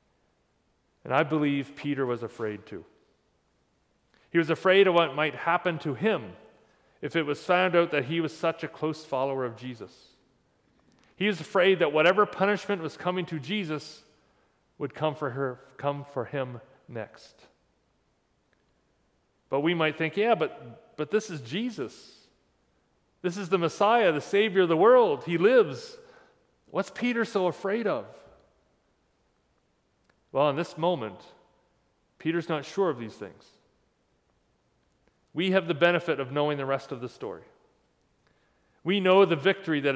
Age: 40-59